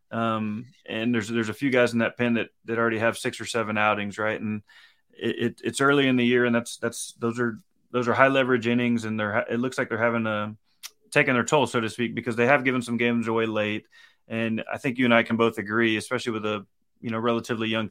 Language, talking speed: English, 250 wpm